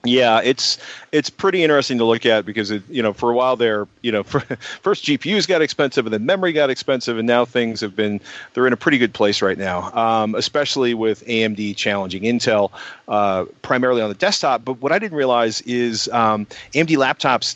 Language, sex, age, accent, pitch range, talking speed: English, male, 40-59, American, 105-135 Hz, 210 wpm